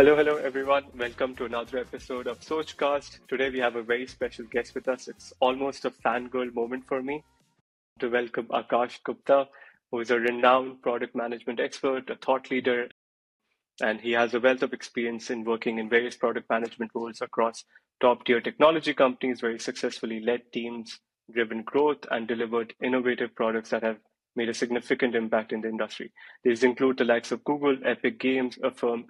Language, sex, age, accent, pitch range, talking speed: English, male, 20-39, Indian, 115-130 Hz, 180 wpm